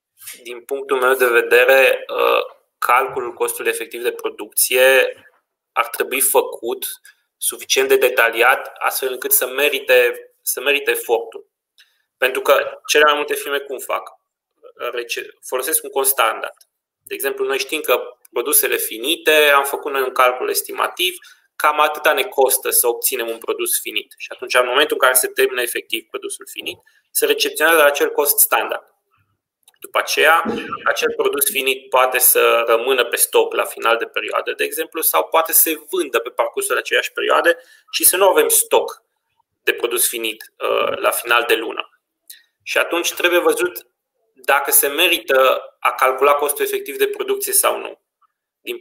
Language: Romanian